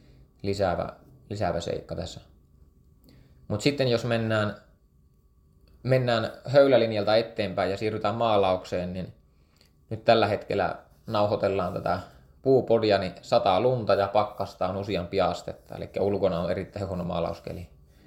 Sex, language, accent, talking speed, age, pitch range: male, Finnish, native, 115 wpm, 20-39, 80-105 Hz